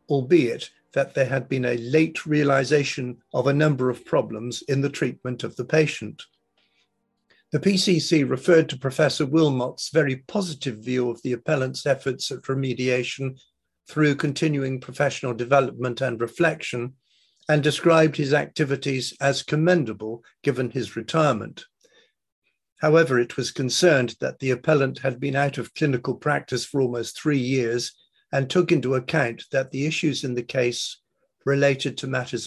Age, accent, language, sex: 50-69, British, English, male